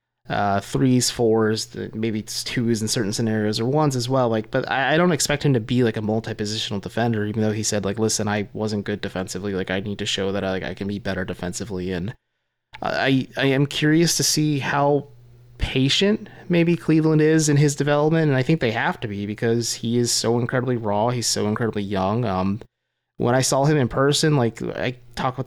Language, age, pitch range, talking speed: English, 20-39, 100-130 Hz, 210 wpm